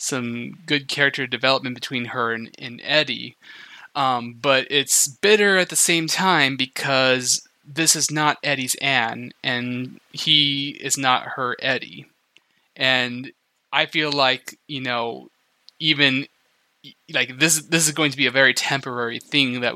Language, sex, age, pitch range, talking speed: English, male, 20-39, 125-145 Hz, 145 wpm